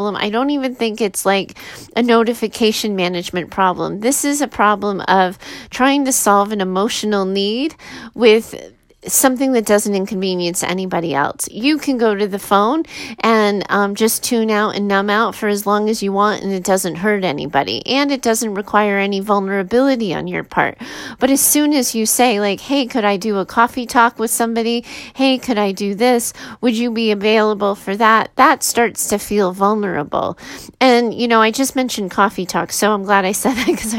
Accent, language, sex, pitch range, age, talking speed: American, English, female, 200-245 Hz, 30-49, 190 wpm